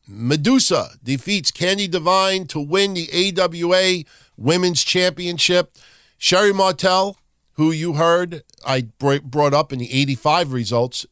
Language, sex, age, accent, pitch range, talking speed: English, male, 50-69, American, 125-165 Hz, 120 wpm